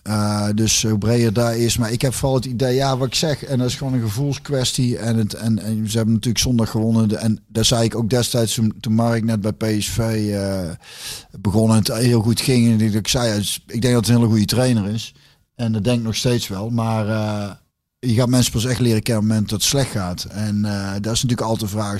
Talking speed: 255 wpm